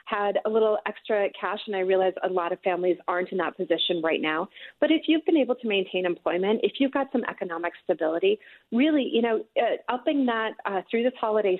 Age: 30-49